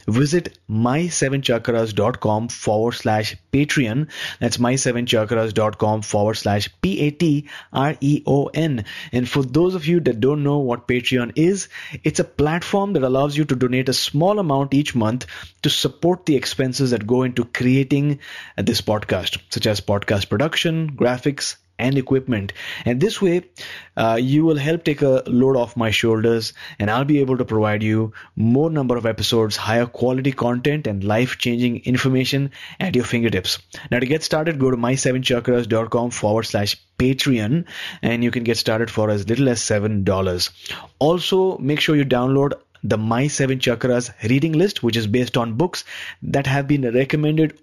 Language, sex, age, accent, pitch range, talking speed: English, male, 20-39, Indian, 115-145 Hz, 160 wpm